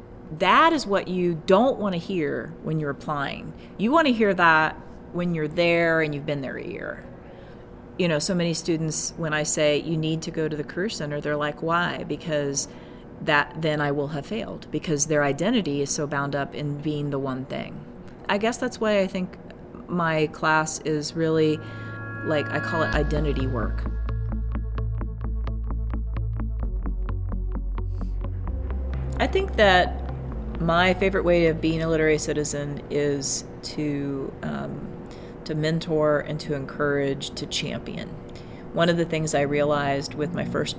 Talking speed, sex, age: 160 wpm, female, 30-49